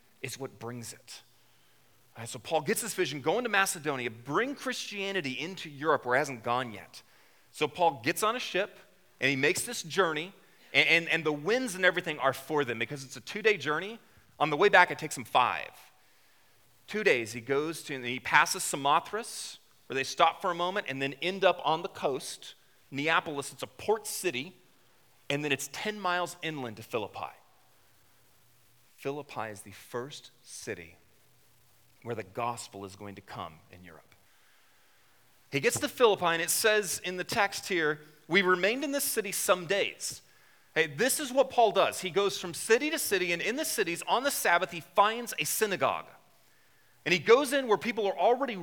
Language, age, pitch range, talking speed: English, 30-49, 135-205 Hz, 190 wpm